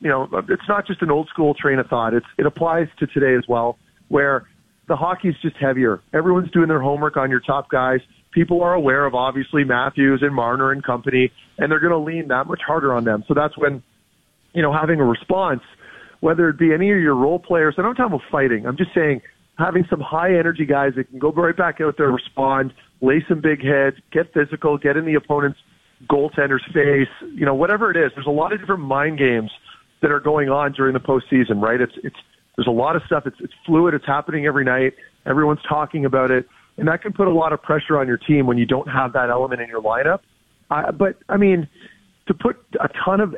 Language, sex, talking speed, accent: English, male, 230 wpm, American